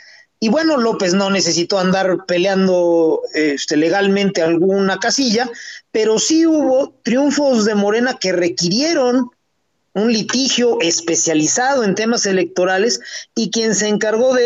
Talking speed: 125 wpm